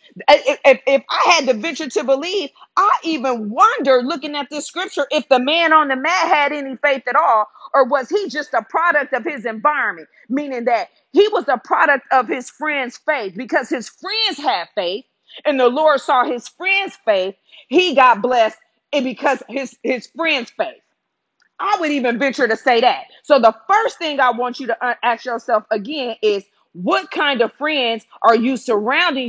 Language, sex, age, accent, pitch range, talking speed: English, female, 40-59, American, 245-315 Hz, 190 wpm